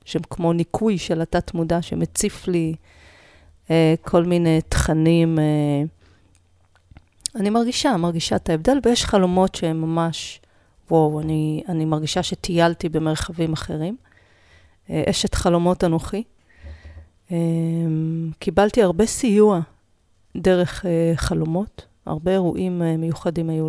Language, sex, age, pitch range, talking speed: Hebrew, female, 40-59, 155-190 Hz, 95 wpm